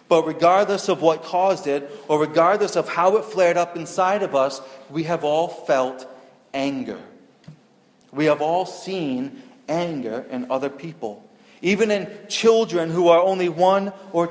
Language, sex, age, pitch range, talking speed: English, male, 30-49, 145-210 Hz, 155 wpm